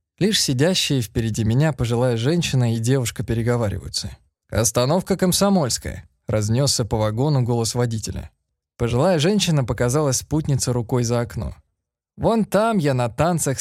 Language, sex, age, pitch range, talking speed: Russian, male, 20-39, 110-150 Hz, 130 wpm